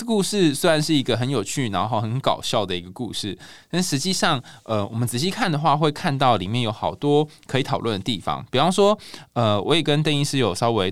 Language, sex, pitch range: Chinese, male, 105-150 Hz